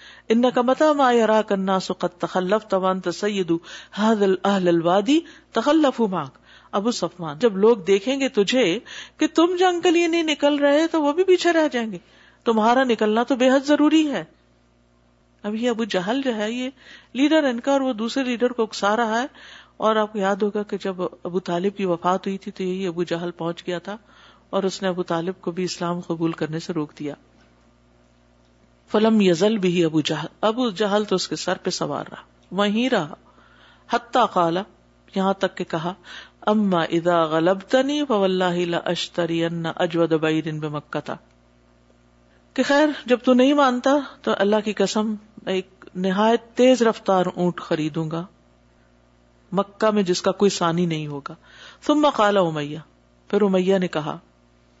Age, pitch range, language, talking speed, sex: 50-69, 170-235 Hz, Urdu, 160 wpm, female